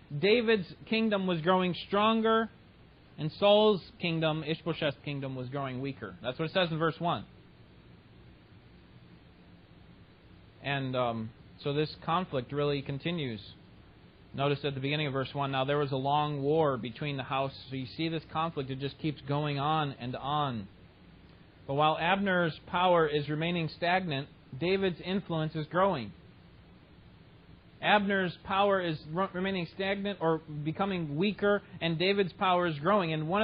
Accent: American